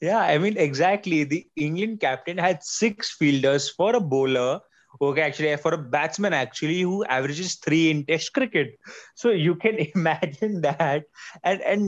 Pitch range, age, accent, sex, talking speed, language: 135-180 Hz, 20-39, Indian, male, 160 wpm, English